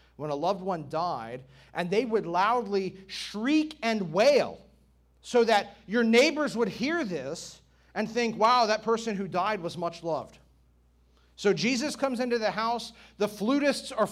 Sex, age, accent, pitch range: male, 40-59, American, 165-255 Hz